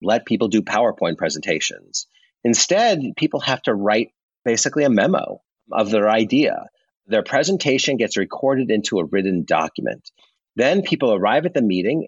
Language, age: English, 40-59